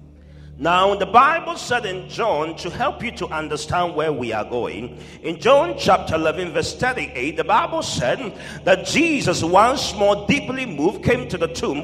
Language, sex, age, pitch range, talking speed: English, male, 50-69, 155-210 Hz, 170 wpm